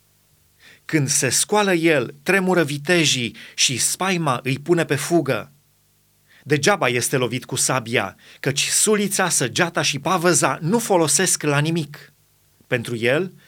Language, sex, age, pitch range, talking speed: Romanian, male, 30-49, 140-175 Hz, 125 wpm